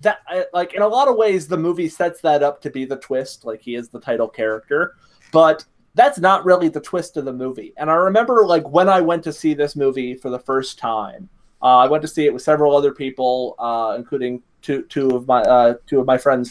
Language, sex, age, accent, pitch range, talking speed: English, male, 20-39, American, 130-170 Hz, 245 wpm